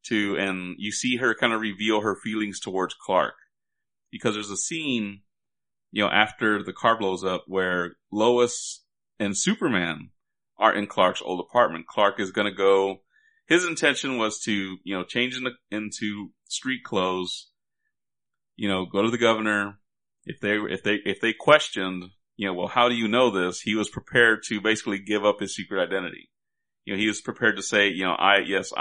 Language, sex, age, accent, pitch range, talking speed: English, male, 30-49, American, 95-115 Hz, 185 wpm